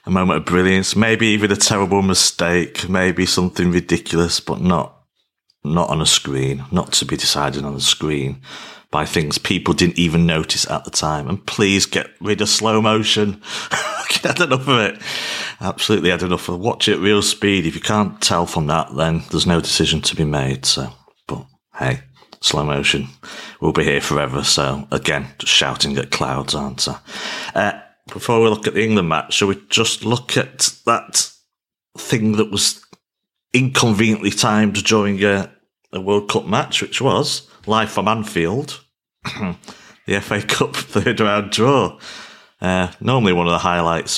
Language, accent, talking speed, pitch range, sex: English, British, 170 wpm, 80-110 Hz, male